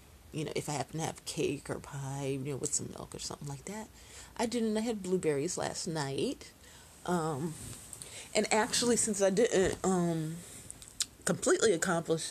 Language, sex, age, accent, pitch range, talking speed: English, female, 30-49, American, 145-210 Hz, 170 wpm